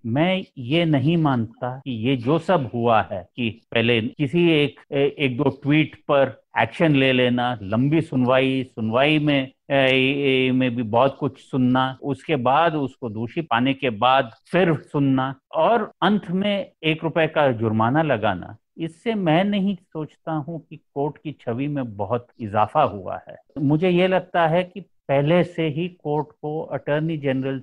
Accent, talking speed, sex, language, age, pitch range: native, 165 wpm, male, Hindi, 50-69, 125-165 Hz